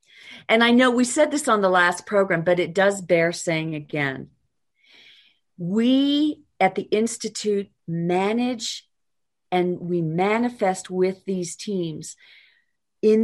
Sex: female